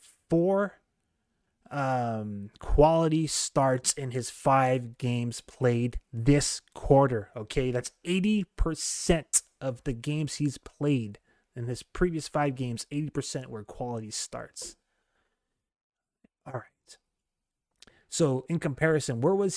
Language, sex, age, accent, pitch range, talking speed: English, male, 30-49, American, 125-155 Hz, 100 wpm